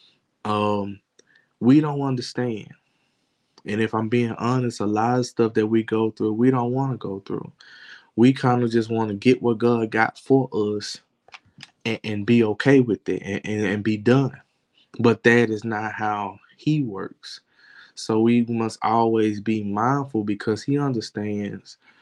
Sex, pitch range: male, 100-115 Hz